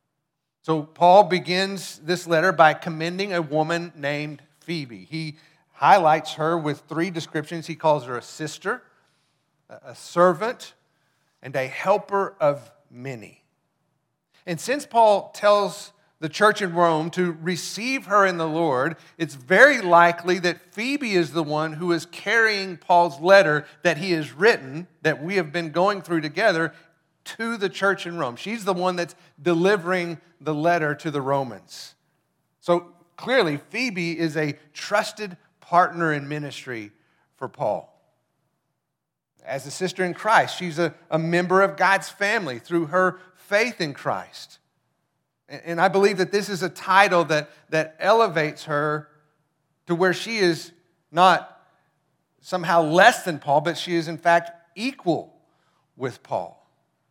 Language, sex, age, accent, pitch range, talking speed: English, male, 50-69, American, 155-185 Hz, 145 wpm